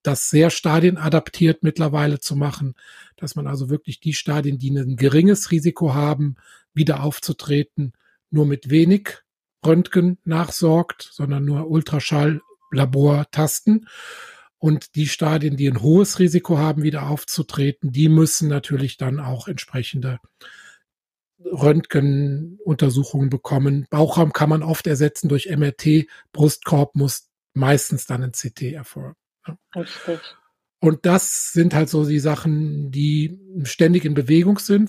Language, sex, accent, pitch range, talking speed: German, male, German, 145-175 Hz, 125 wpm